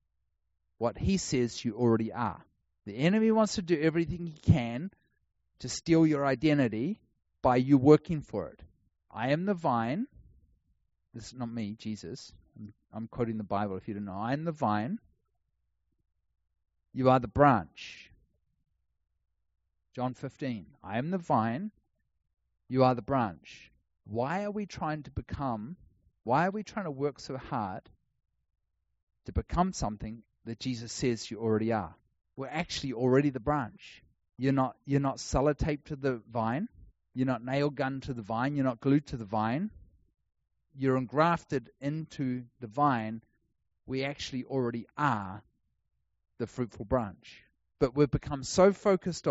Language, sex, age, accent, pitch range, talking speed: English, male, 40-59, Australian, 110-145 Hz, 150 wpm